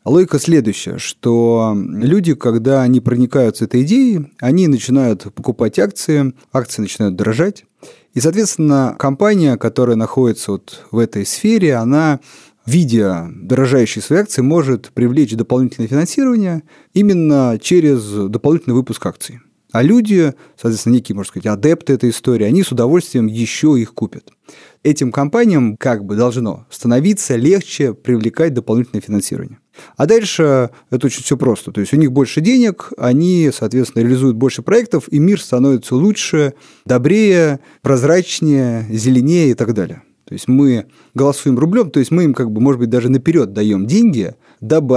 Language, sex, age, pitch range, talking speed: Russian, male, 30-49, 120-160 Hz, 145 wpm